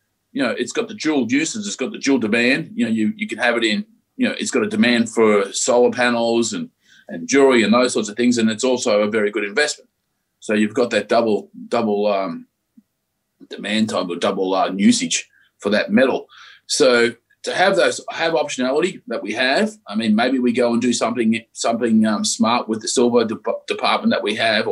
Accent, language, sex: Australian, English, male